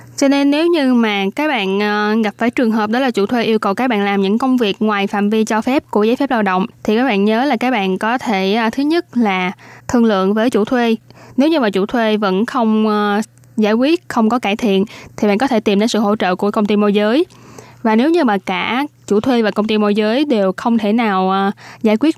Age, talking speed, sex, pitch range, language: 10-29, 255 wpm, female, 205-240 Hz, Vietnamese